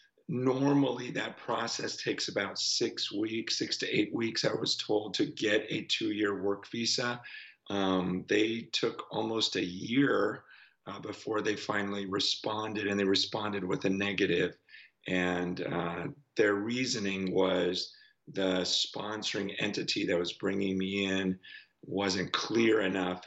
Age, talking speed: 40-59, 135 wpm